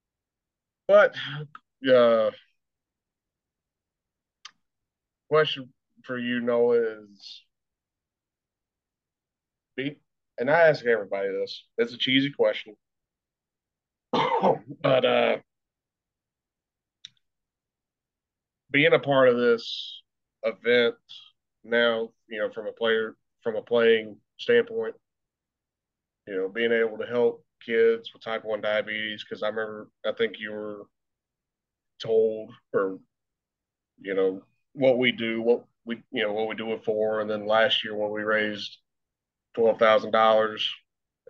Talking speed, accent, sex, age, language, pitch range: 110 wpm, American, male, 30-49, English, 105-130 Hz